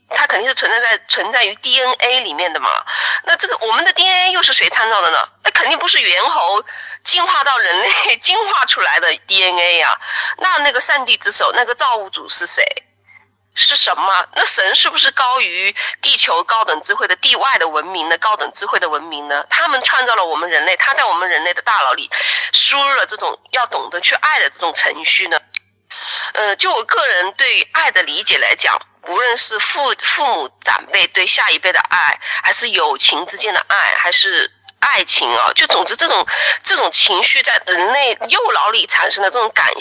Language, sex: Chinese, female